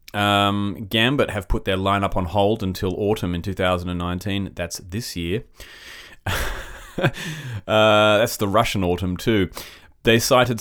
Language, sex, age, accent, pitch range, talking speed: English, male, 30-49, Australian, 90-105 Hz, 130 wpm